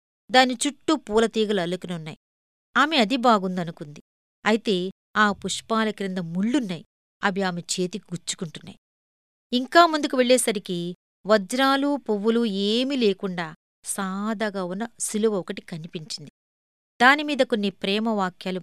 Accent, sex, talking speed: native, female, 105 wpm